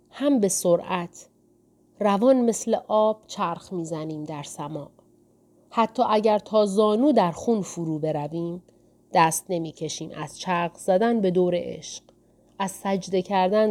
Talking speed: 125 wpm